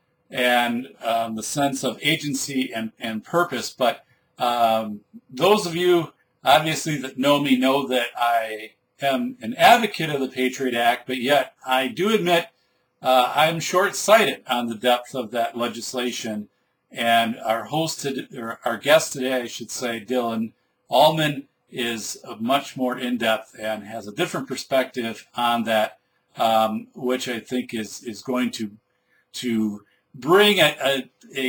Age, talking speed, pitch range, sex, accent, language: 50-69, 155 wpm, 115-145 Hz, male, American, English